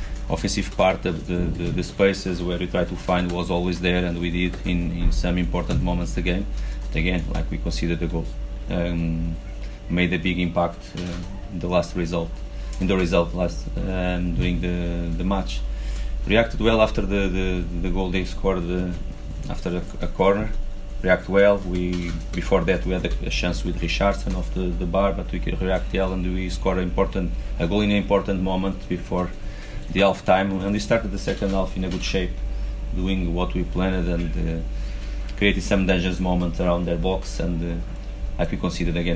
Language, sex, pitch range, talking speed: English, male, 85-95 Hz, 195 wpm